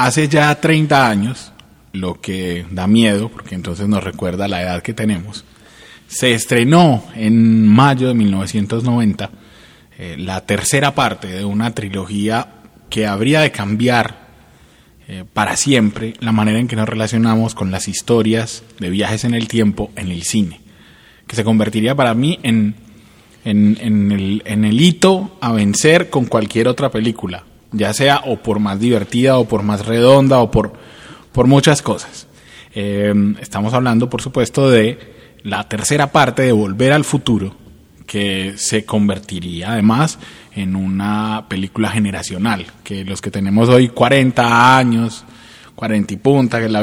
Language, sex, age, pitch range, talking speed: Spanish, male, 30-49, 100-125 Hz, 150 wpm